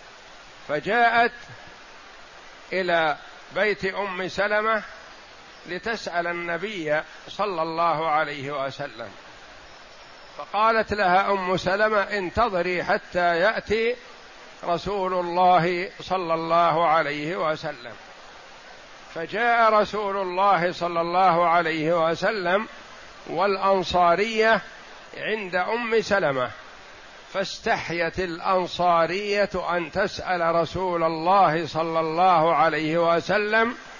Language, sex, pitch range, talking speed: Arabic, male, 170-205 Hz, 80 wpm